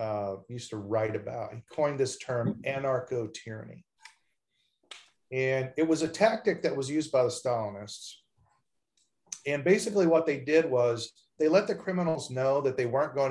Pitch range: 120-155 Hz